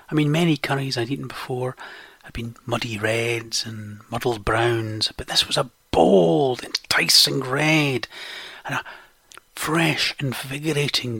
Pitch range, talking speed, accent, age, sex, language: 125-160 Hz, 135 wpm, British, 30-49, male, English